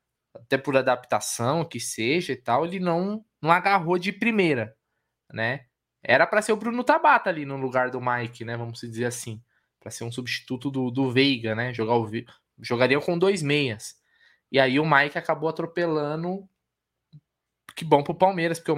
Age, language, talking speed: 20-39, Portuguese, 175 wpm